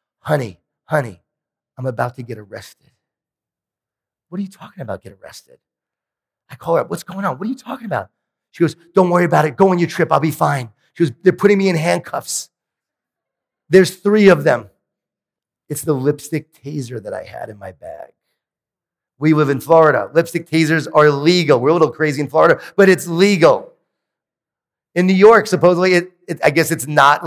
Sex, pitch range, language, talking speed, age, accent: male, 150-185 Hz, English, 190 wpm, 40-59, American